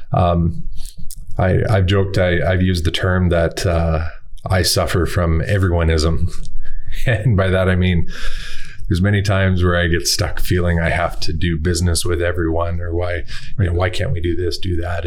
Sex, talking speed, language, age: male, 185 wpm, English, 30-49